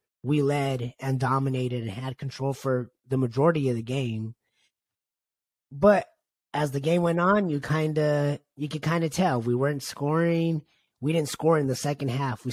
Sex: male